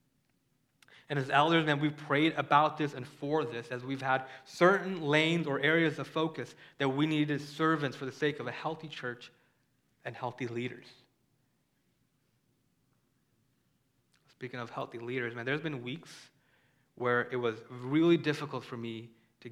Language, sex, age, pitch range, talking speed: English, male, 20-39, 130-160 Hz, 155 wpm